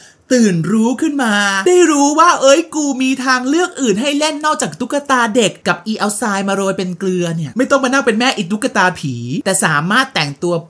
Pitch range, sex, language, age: 160-225 Hz, male, Thai, 20-39